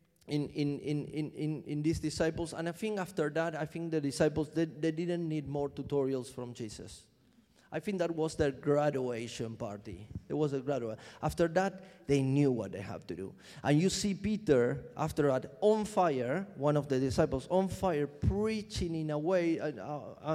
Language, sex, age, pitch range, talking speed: English, male, 30-49, 145-175 Hz, 185 wpm